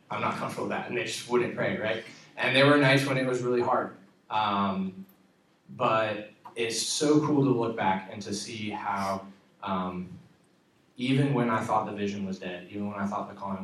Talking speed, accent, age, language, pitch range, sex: 210 wpm, American, 20-39, English, 95-120 Hz, male